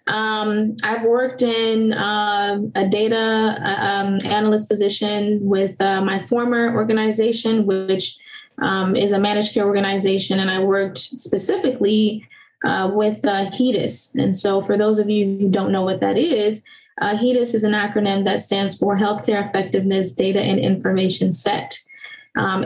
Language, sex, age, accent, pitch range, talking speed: English, female, 20-39, American, 195-225 Hz, 150 wpm